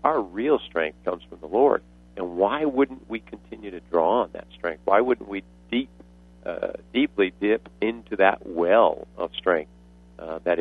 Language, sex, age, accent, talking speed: English, male, 50-69, American, 175 wpm